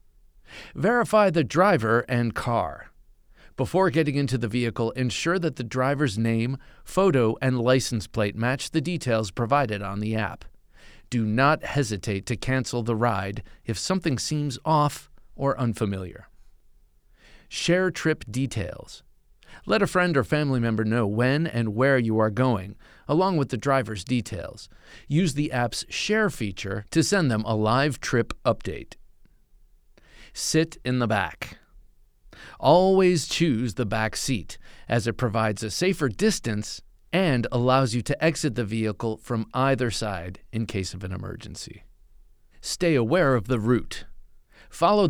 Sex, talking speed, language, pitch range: male, 145 wpm, English, 110-145 Hz